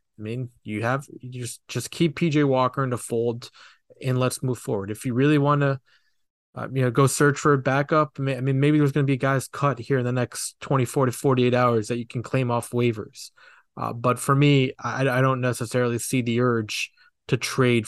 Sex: male